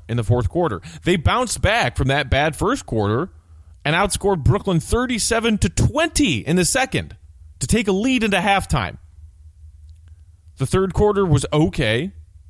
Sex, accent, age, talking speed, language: male, American, 30-49, 155 wpm, English